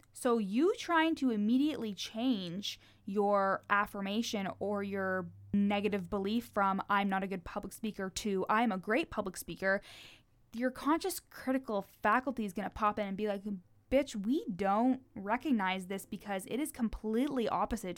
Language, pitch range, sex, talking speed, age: English, 195-245 Hz, female, 155 wpm, 20-39